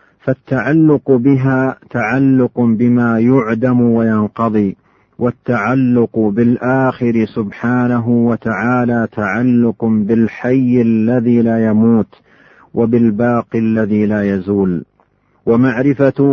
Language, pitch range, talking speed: Arabic, 115-125 Hz, 75 wpm